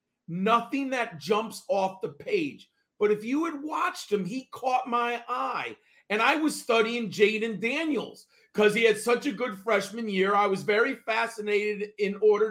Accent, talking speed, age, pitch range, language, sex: American, 175 wpm, 40-59, 195-250 Hz, English, male